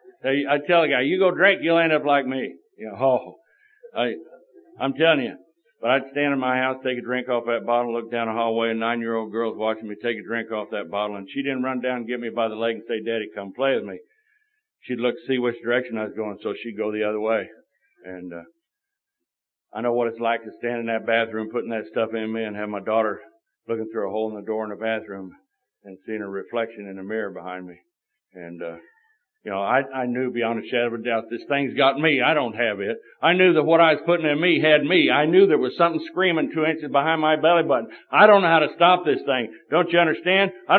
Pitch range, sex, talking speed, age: 115-170 Hz, male, 250 wpm, 60-79